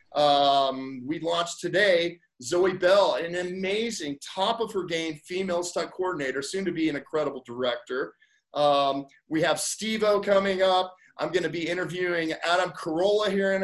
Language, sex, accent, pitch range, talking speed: English, male, American, 150-190 Hz, 160 wpm